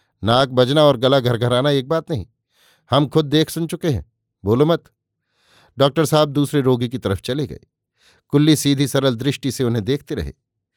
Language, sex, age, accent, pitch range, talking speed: Hindi, male, 50-69, native, 115-145 Hz, 180 wpm